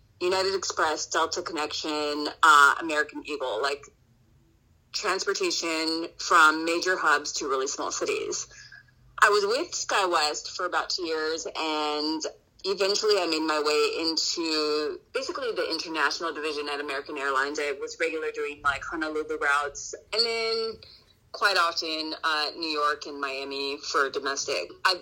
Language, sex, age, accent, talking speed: English, female, 30-49, American, 135 wpm